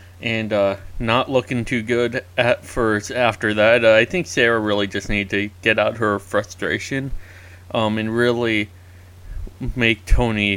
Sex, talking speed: male, 155 wpm